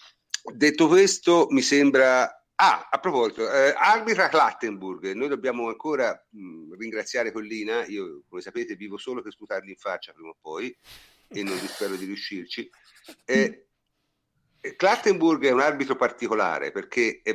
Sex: male